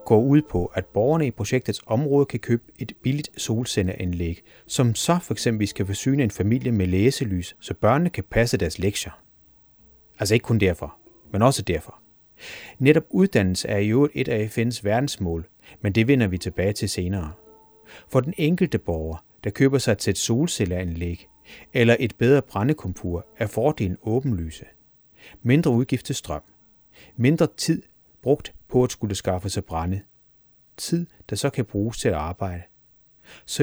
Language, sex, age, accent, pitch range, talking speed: Danish, male, 30-49, native, 100-135 Hz, 155 wpm